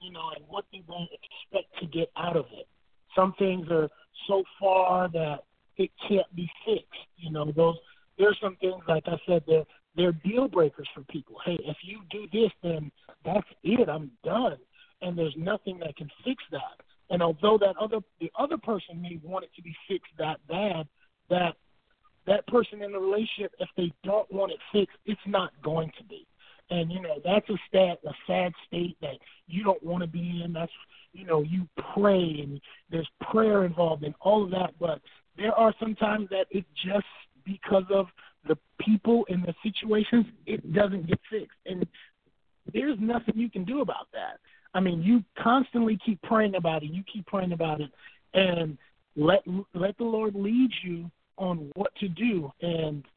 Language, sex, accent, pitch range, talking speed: English, male, American, 165-210 Hz, 190 wpm